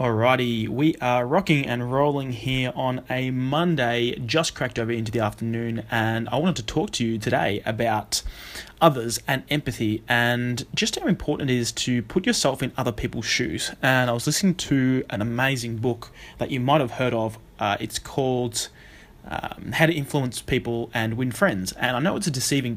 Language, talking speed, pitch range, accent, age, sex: English, 190 wpm, 120-140 Hz, Australian, 20-39, male